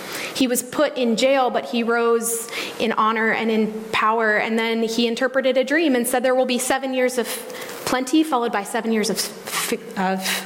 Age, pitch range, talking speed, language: 20-39, 215-245 Hz, 195 wpm, English